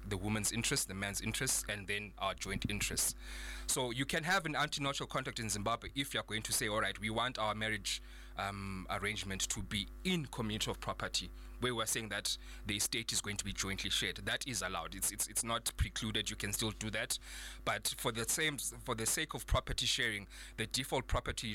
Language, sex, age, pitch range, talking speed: English, male, 20-39, 100-115 Hz, 215 wpm